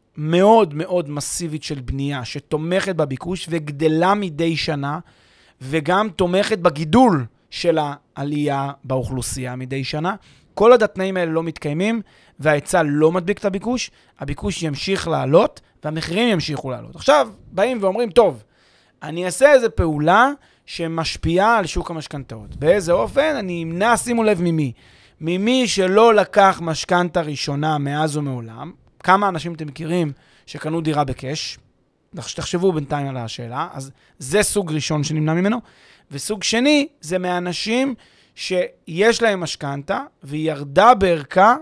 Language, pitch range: Hebrew, 150-195 Hz